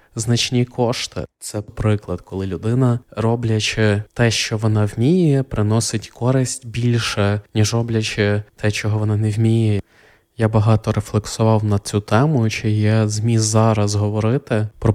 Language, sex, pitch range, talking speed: Ukrainian, male, 110-120 Hz, 135 wpm